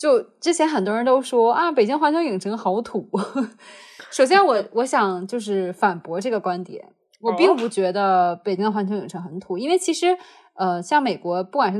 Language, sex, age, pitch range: Chinese, female, 20-39, 185-260 Hz